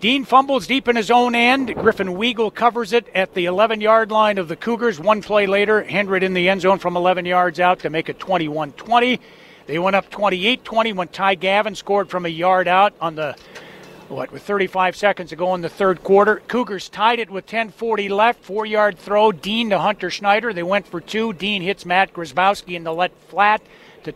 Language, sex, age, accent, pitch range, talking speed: English, male, 40-59, American, 185-225 Hz, 205 wpm